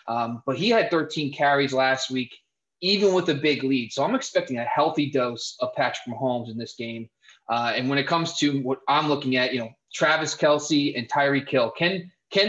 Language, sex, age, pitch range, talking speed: English, male, 20-39, 125-155 Hz, 210 wpm